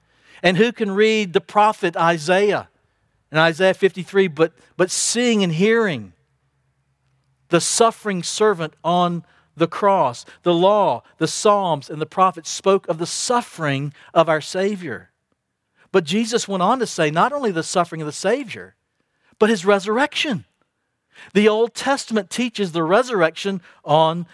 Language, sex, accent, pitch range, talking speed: English, male, American, 150-195 Hz, 145 wpm